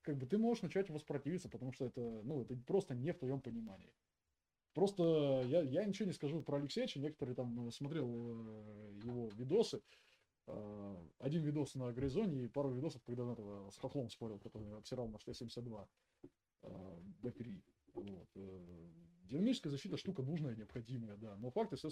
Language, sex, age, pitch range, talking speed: Russian, male, 20-39, 120-160 Hz, 155 wpm